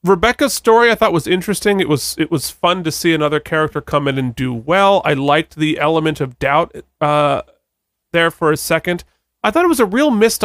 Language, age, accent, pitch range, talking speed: English, 30-49, American, 145-195 Hz, 220 wpm